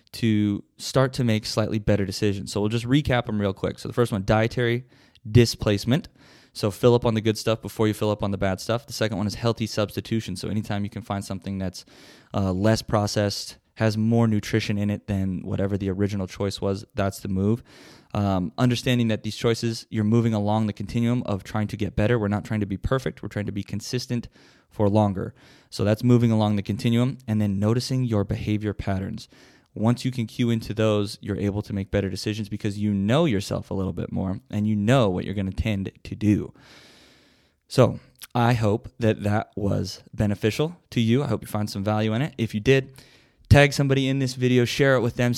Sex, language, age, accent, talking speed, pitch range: male, English, 20-39, American, 215 wpm, 105-120 Hz